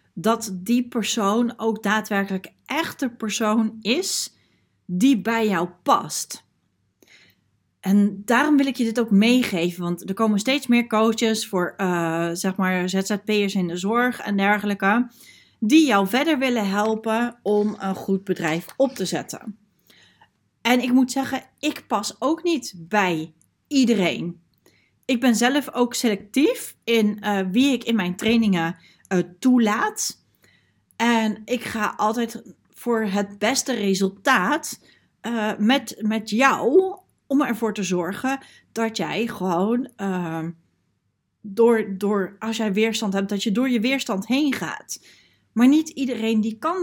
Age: 30-49